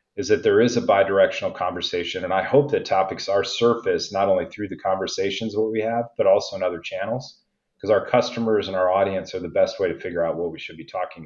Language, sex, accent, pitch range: English, male, American, 95-115 Hz